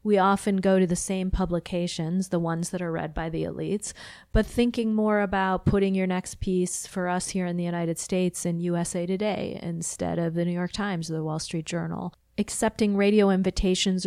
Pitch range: 175-200 Hz